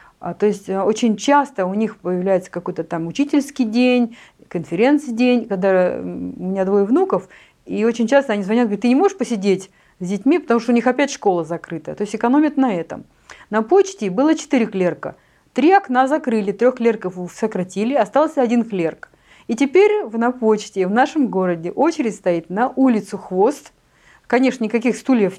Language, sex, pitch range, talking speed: Russian, female, 195-270 Hz, 165 wpm